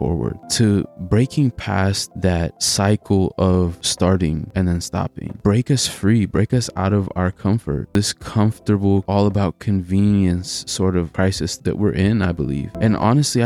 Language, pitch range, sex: English, 90-105 Hz, male